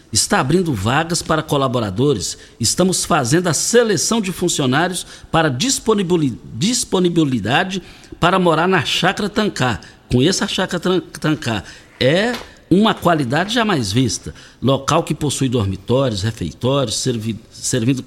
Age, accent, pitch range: 60-79, Brazilian, 115-175 Hz